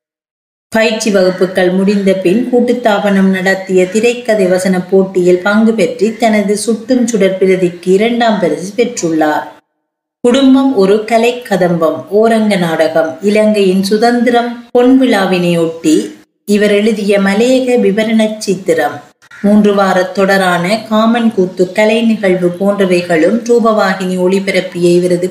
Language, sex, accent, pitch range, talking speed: Tamil, female, native, 175-220 Hz, 105 wpm